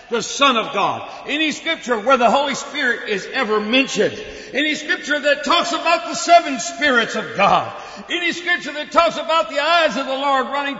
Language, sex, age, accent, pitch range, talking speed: English, male, 60-79, American, 205-310 Hz, 190 wpm